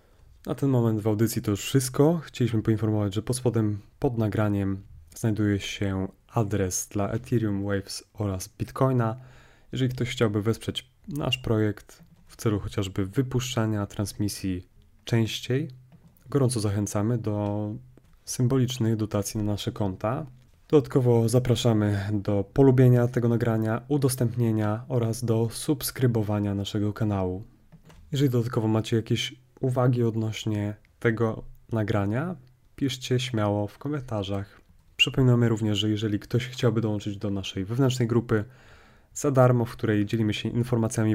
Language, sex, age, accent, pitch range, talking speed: Polish, male, 20-39, native, 105-125 Hz, 125 wpm